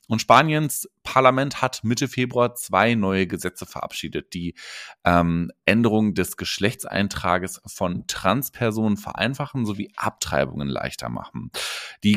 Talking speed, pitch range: 115 wpm, 95-130 Hz